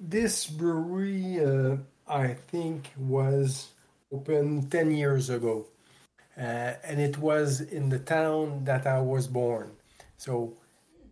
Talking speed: 120 wpm